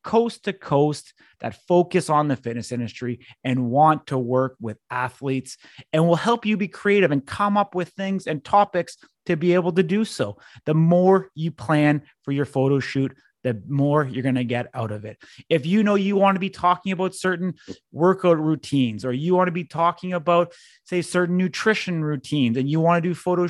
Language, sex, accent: English, male, American